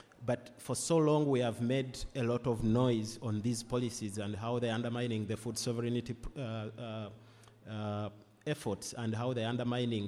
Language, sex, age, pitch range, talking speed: English, male, 30-49, 110-125 Hz, 175 wpm